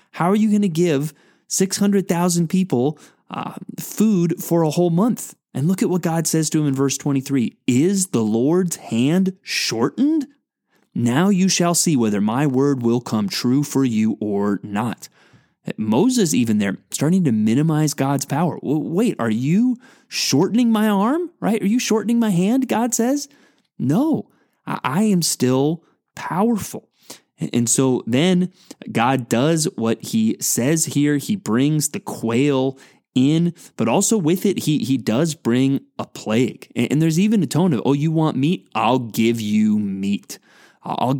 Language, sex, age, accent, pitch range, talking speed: English, male, 30-49, American, 125-190 Hz, 160 wpm